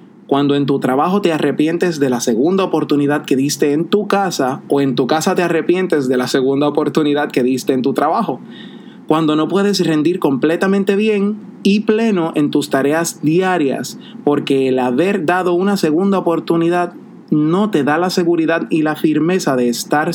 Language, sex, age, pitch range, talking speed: Spanish, male, 30-49, 145-195 Hz, 175 wpm